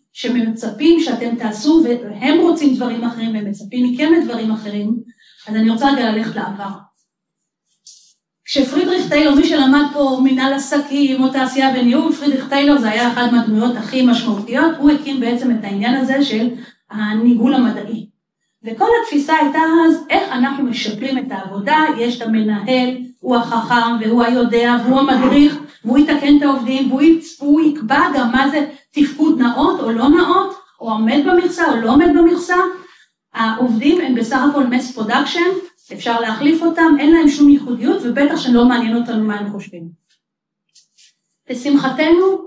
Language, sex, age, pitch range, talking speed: Hebrew, female, 30-49, 235-290 Hz, 150 wpm